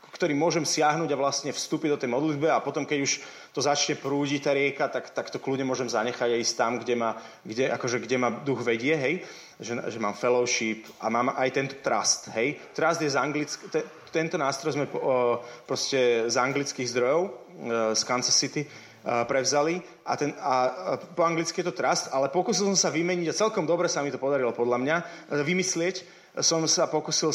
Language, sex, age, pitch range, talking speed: Slovak, male, 30-49, 125-160 Hz, 190 wpm